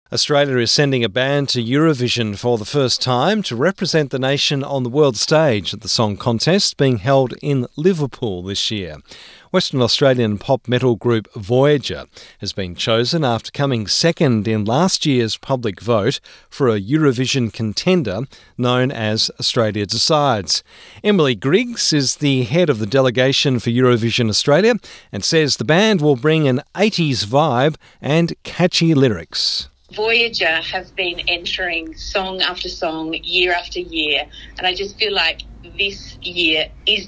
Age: 40-59